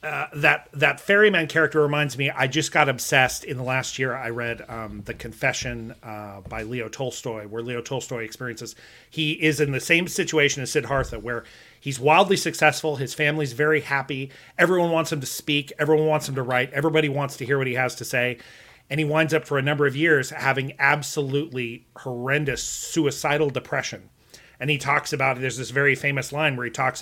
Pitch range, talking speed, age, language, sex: 130-170 Hz, 200 wpm, 30-49, English, male